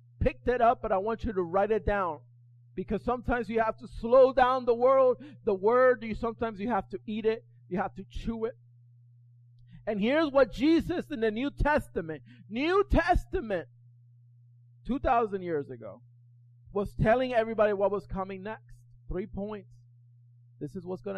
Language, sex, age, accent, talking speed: English, male, 30-49, American, 170 wpm